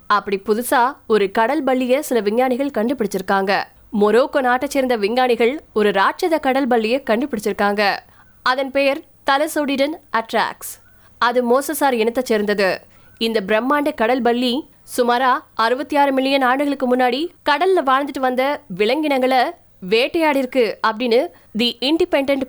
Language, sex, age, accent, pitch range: Tamil, female, 20-39, native, 225-280 Hz